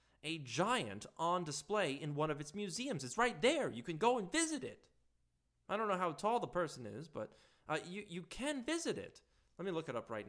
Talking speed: 225 wpm